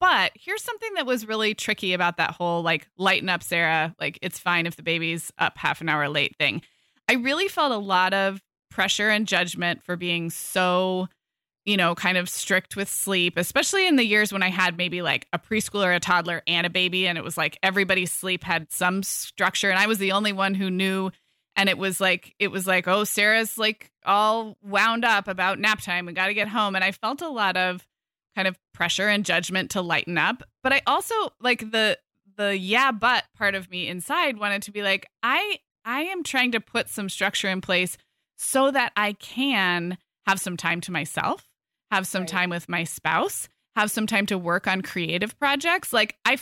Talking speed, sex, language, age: 210 wpm, female, English, 20-39